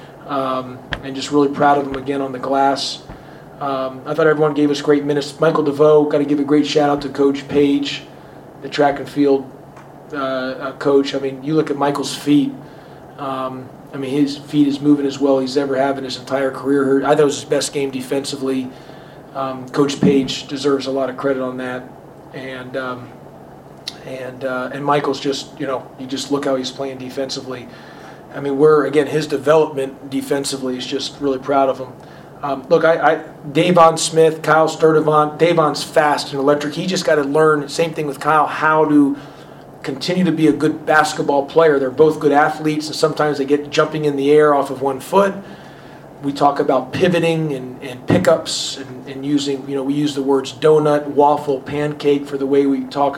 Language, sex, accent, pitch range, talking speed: English, male, American, 135-150 Hz, 200 wpm